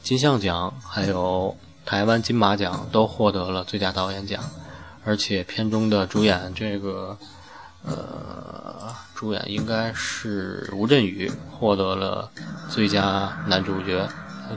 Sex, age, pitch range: male, 20-39, 95-110 Hz